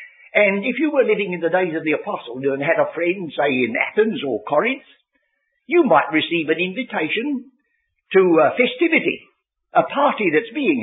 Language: English